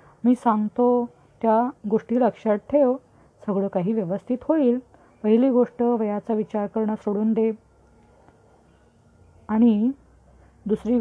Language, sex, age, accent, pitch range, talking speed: Marathi, female, 20-39, native, 175-230 Hz, 105 wpm